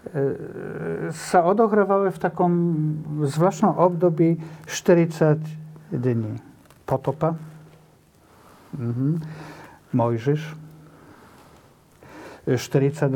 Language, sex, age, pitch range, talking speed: Slovak, male, 50-69, 135-175 Hz, 50 wpm